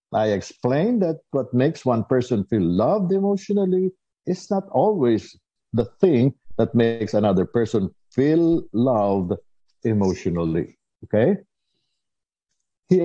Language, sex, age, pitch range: Filipino, male, 60-79, 105-145 Hz